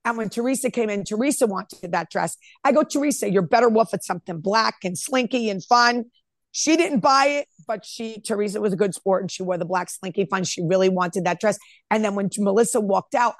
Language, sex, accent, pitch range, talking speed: English, female, American, 195-255 Hz, 230 wpm